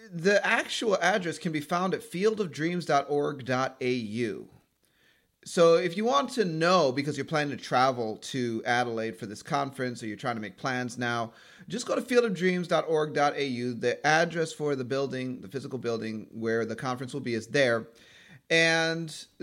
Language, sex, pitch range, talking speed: English, male, 125-170 Hz, 160 wpm